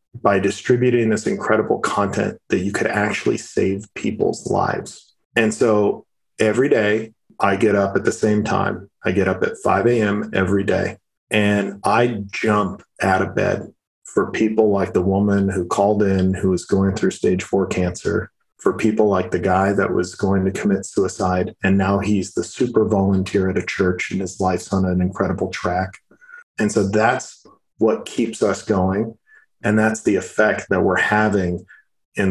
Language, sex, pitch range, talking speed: English, male, 95-110 Hz, 175 wpm